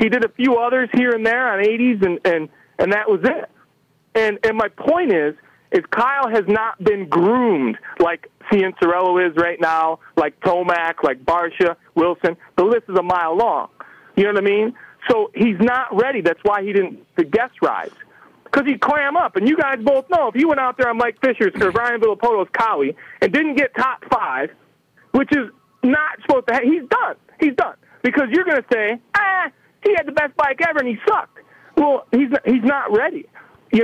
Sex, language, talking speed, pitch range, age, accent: male, English, 205 wpm, 190-285 Hz, 40-59, American